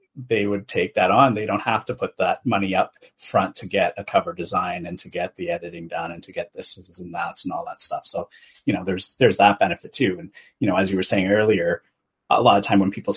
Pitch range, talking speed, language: 115-135 Hz, 270 wpm, English